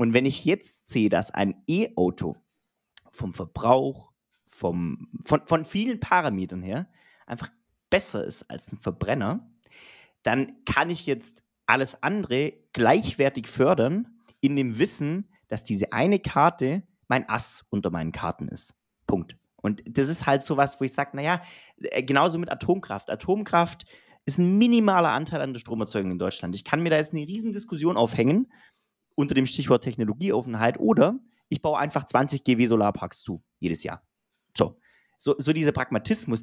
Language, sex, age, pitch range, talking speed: German, male, 30-49, 115-160 Hz, 155 wpm